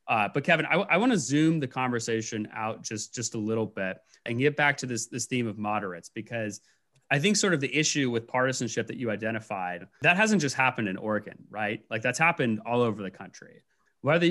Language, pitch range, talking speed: English, 110-140 Hz, 220 wpm